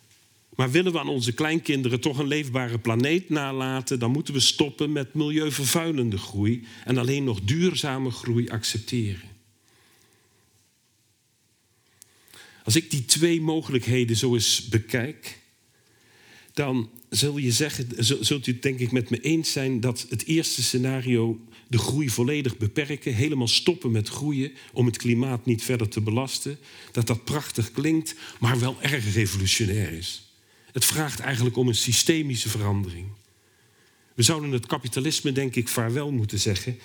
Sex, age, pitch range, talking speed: male, 50-69, 110-135 Hz, 145 wpm